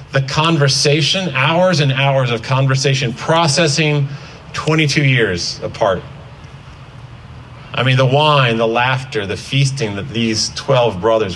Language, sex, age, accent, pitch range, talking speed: English, male, 40-59, American, 125-150 Hz, 120 wpm